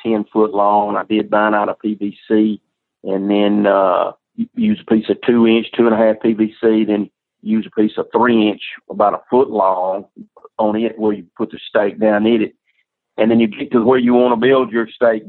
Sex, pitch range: male, 105-120 Hz